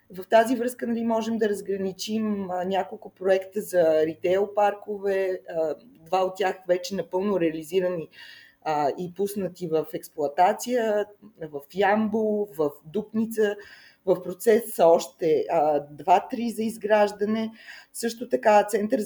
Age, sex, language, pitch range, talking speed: 20-39, female, Bulgarian, 180-225 Hz, 125 wpm